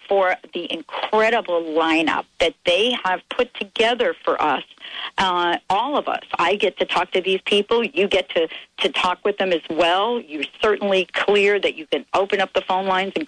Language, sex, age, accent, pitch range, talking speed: English, female, 50-69, American, 170-210 Hz, 195 wpm